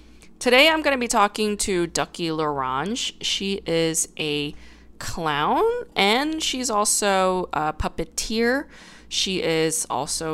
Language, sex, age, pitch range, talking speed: English, female, 20-39, 150-195 Hz, 120 wpm